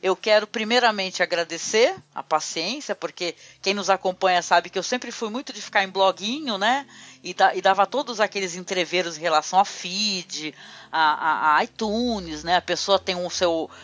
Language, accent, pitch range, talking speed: Portuguese, Brazilian, 175-225 Hz, 180 wpm